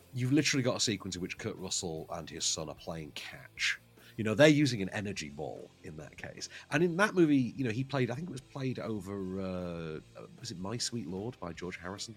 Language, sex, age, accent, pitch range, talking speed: English, male, 40-59, British, 95-150 Hz, 235 wpm